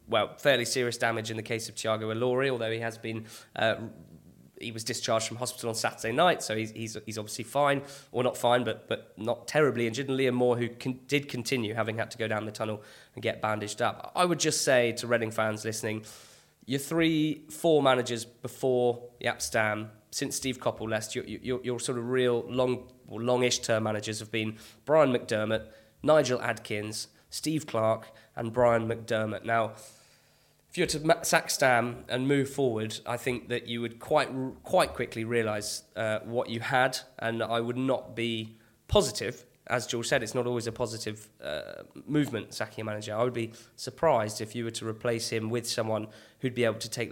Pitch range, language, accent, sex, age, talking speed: 110-125 Hz, English, British, male, 20-39, 195 wpm